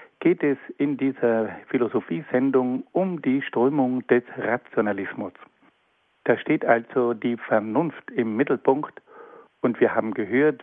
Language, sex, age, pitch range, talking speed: German, male, 60-79, 125-155 Hz, 120 wpm